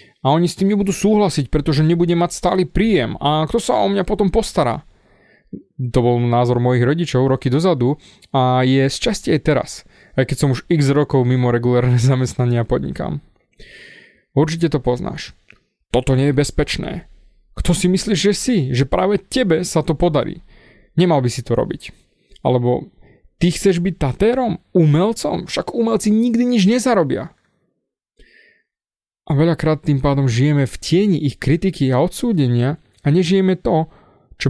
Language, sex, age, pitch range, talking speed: Slovak, male, 30-49, 130-180 Hz, 155 wpm